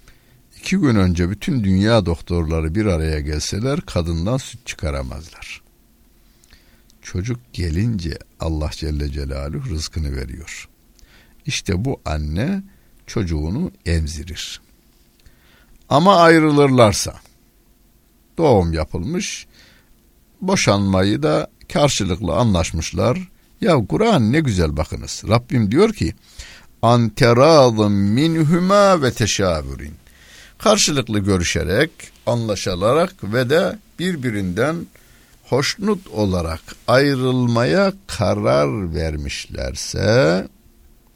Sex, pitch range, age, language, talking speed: male, 85-130 Hz, 60-79, Turkish, 80 wpm